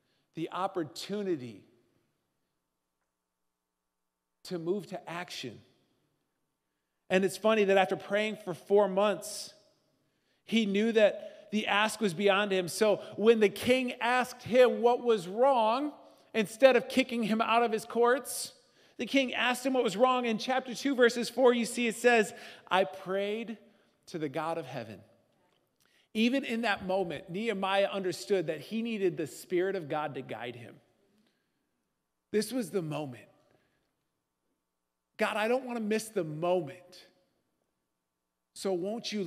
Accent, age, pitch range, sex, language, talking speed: American, 40-59, 160-220 Hz, male, English, 145 wpm